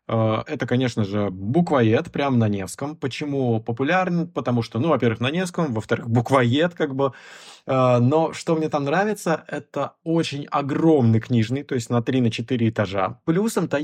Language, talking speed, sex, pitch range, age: Russian, 145 wpm, male, 115-155 Hz, 20-39